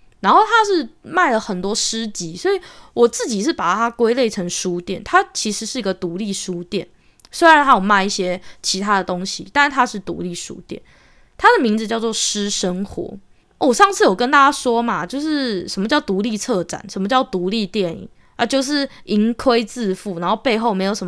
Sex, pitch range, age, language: female, 190-255 Hz, 20-39, Chinese